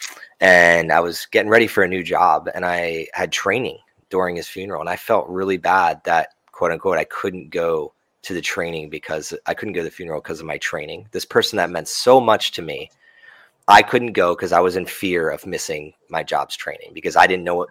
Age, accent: 20-39, American